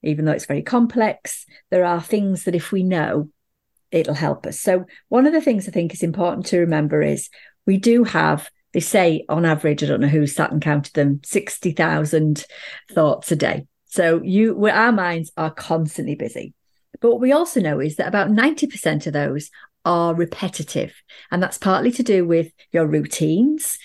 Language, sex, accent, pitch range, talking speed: English, female, British, 160-220 Hz, 190 wpm